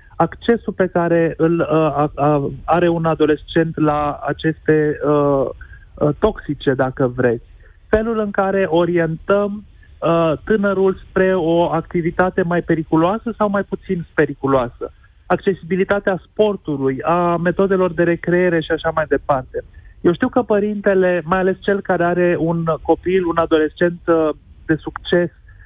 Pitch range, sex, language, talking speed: 155-190 Hz, male, Romanian, 135 wpm